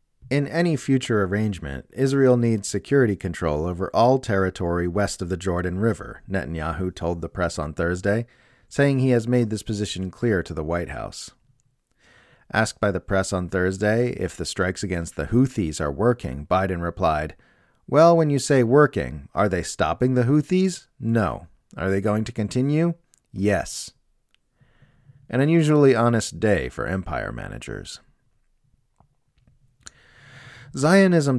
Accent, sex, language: American, male, English